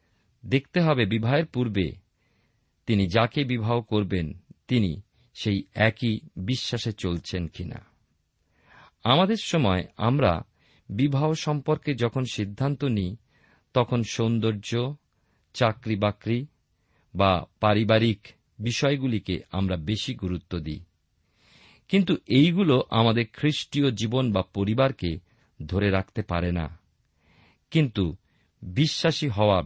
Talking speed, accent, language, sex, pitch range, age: 95 wpm, native, Bengali, male, 95-130 Hz, 50-69